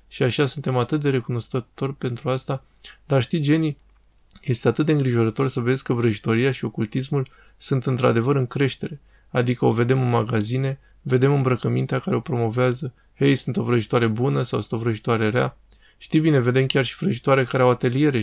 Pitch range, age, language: 120-140 Hz, 20-39, Romanian